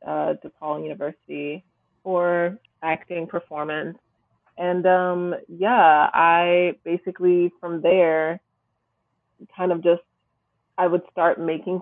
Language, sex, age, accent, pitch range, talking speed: English, female, 20-39, American, 165-185 Hz, 100 wpm